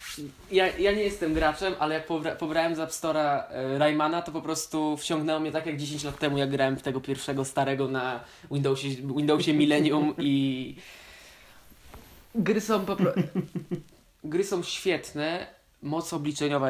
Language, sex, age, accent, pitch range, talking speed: Polish, male, 20-39, native, 135-160 Hz, 155 wpm